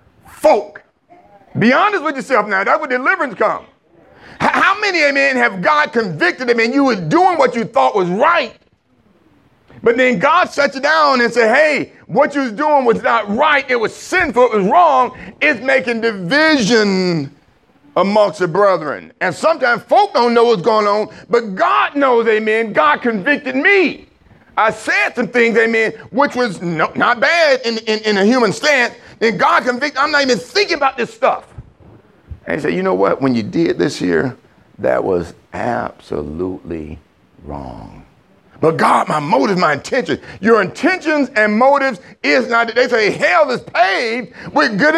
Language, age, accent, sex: English, 40-59, American, male